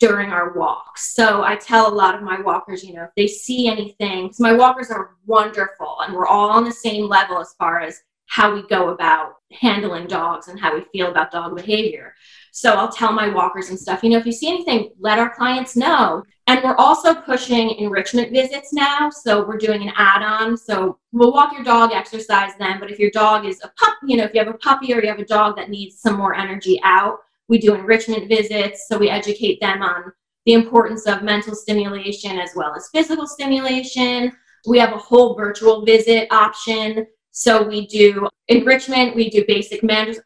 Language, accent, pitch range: English, American, 195-230 Hz